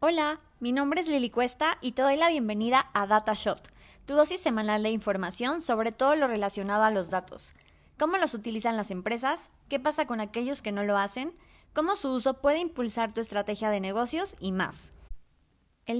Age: 20-39